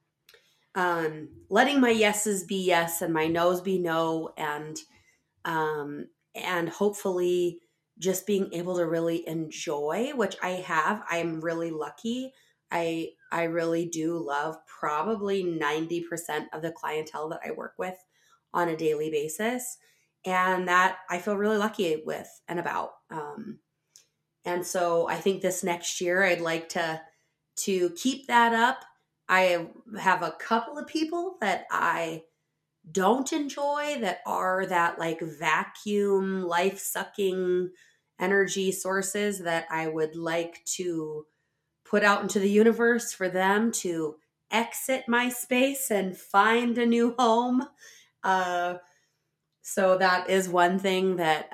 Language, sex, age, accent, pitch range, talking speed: English, female, 20-39, American, 165-205 Hz, 135 wpm